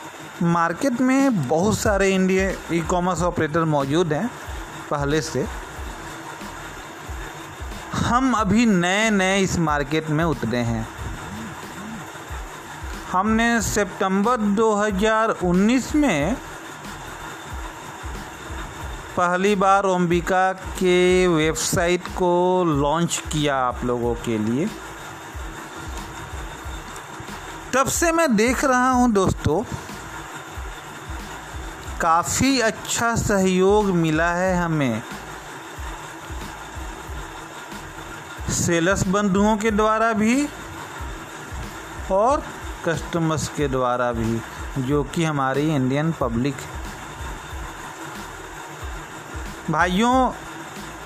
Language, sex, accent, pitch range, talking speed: English, male, Indian, 150-210 Hz, 75 wpm